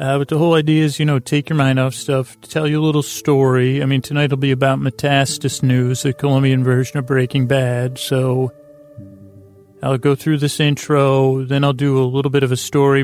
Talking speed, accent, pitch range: 215 wpm, American, 130-140 Hz